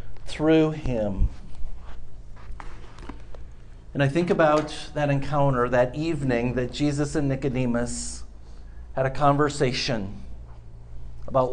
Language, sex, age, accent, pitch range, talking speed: English, male, 50-69, American, 105-160 Hz, 95 wpm